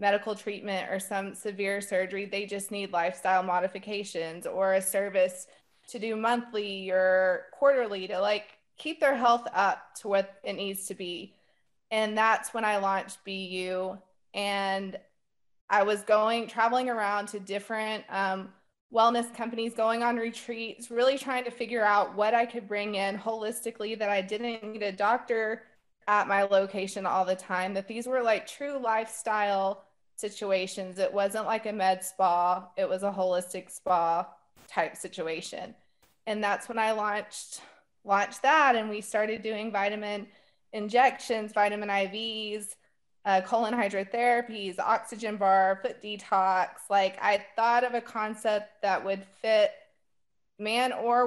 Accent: American